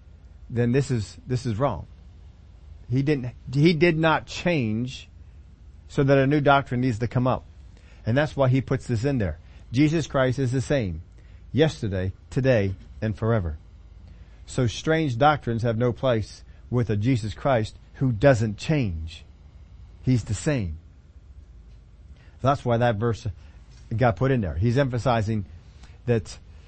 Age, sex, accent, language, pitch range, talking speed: 40-59, male, American, English, 90-145 Hz, 145 wpm